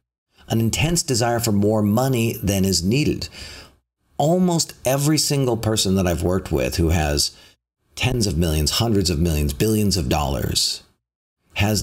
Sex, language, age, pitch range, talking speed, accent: male, English, 50-69, 85-110 Hz, 145 wpm, American